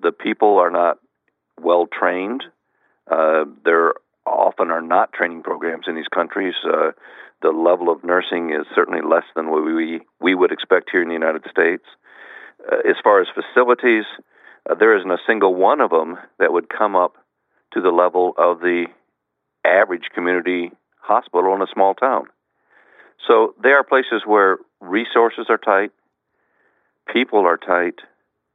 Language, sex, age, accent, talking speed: English, male, 50-69, American, 155 wpm